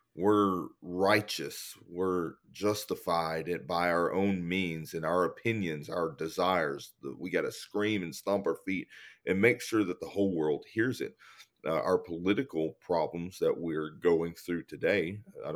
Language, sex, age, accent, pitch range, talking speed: English, male, 40-59, American, 85-105 Hz, 155 wpm